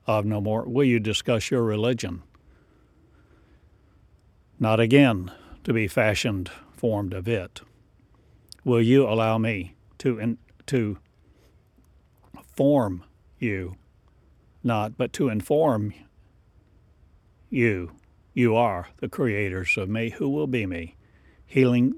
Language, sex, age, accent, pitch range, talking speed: English, male, 60-79, American, 90-115 Hz, 110 wpm